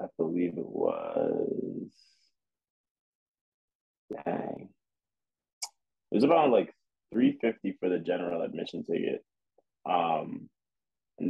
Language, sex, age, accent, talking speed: English, male, 20-39, American, 85 wpm